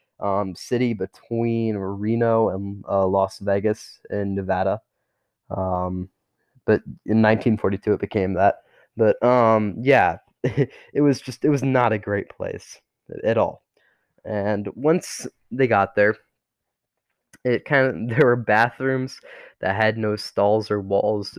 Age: 20-39